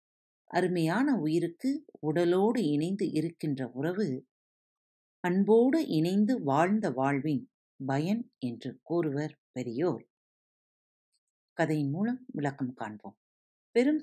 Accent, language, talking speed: native, Tamil, 80 wpm